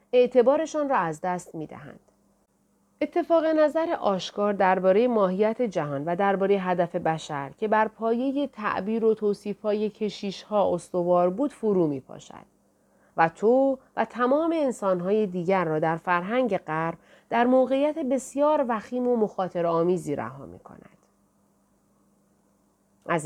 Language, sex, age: Persian, female, 30-49